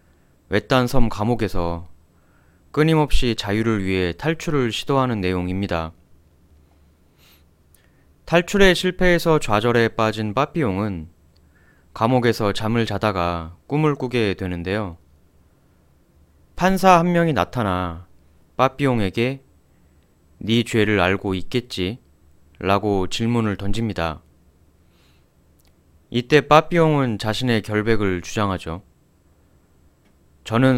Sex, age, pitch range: male, 20-39, 80-115 Hz